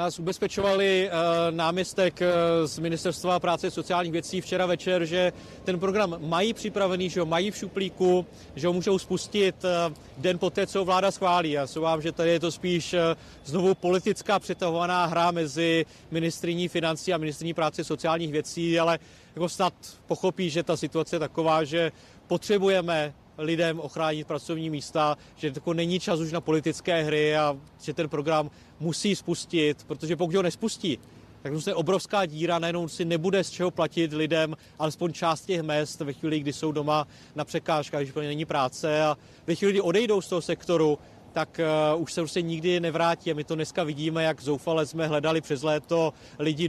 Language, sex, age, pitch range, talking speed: Czech, male, 30-49, 155-180 Hz, 175 wpm